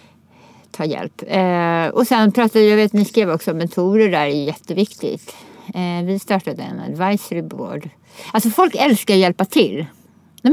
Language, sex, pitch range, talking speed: English, female, 175-235 Hz, 160 wpm